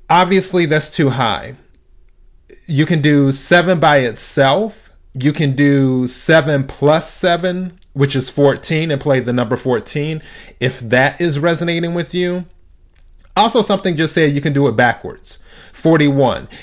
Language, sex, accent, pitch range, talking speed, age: English, male, American, 120-155 Hz, 145 wpm, 30-49